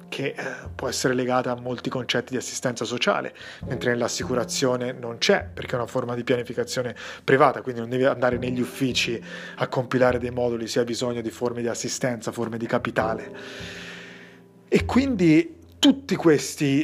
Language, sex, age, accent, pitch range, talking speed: Italian, male, 30-49, native, 125-145 Hz, 160 wpm